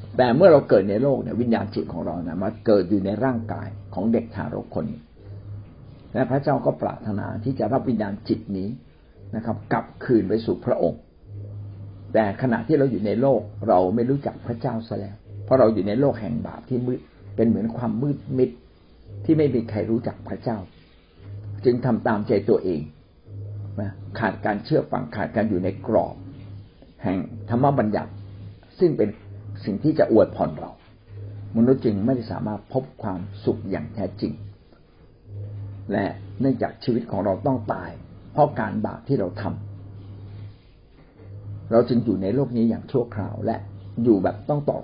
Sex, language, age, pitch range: male, Thai, 60-79, 100-120 Hz